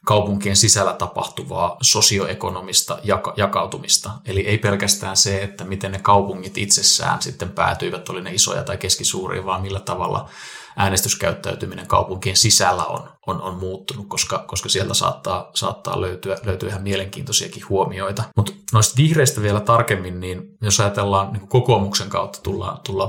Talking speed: 140 wpm